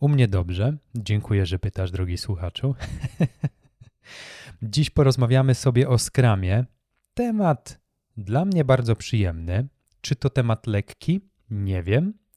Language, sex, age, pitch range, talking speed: Polish, male, 30-49, 100-125 Hz, 120 wpm